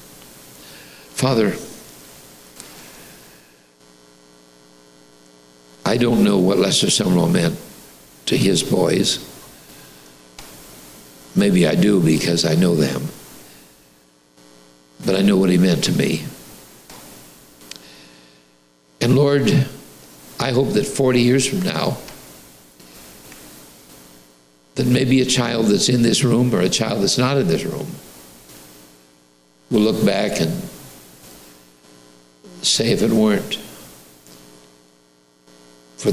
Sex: male